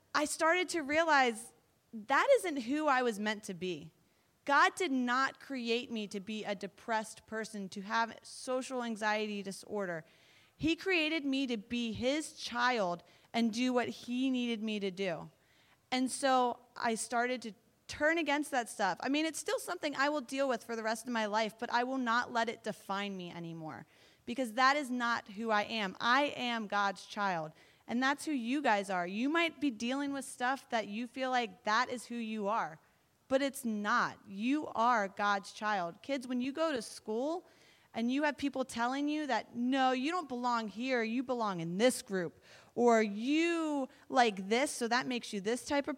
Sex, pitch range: female, 215-275 Hz